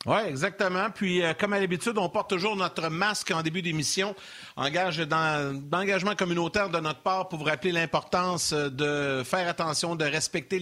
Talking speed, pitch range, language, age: 180 wpm, 145-190 Hz, French, 50-69